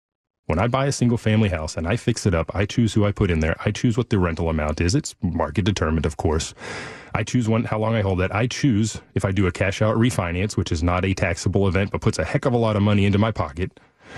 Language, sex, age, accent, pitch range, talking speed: English, male, 30-49, American, 85-105 Hz, 275 wpm